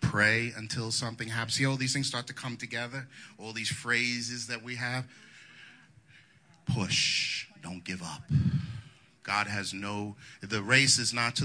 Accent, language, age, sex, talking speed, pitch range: American, English, 40-59, male, 155 wpm, 105-140 Hz